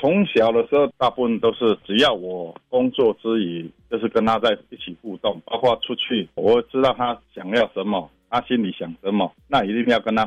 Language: Chinese